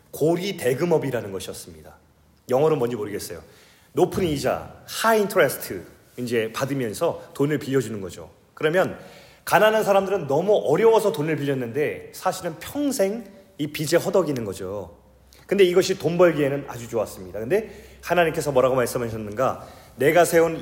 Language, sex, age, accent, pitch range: Korean, male, 30-49, native, 125-185 Hz